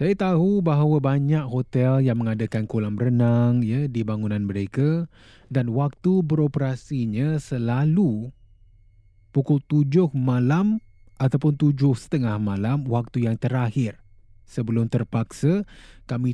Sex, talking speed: male, 110 wpm